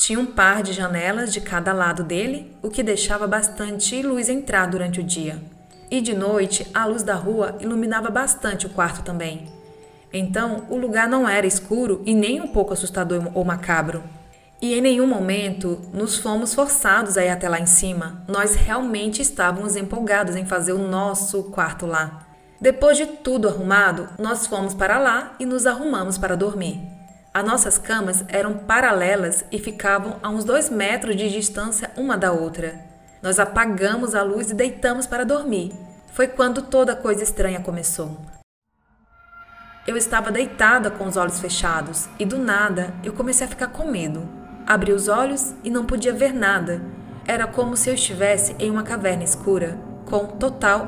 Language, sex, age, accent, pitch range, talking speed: Portuguese, female, 20-39, Brazilian, 185-235 Hz, 170 wpm